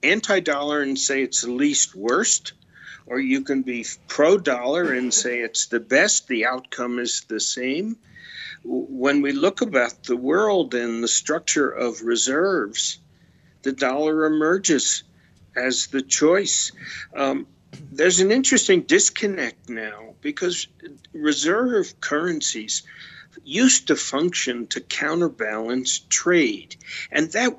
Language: English